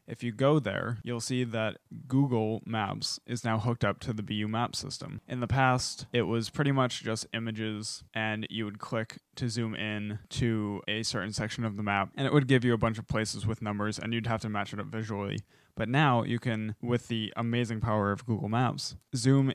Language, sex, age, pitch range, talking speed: English, male, 20-39, 105-120 Hz, 220 wpm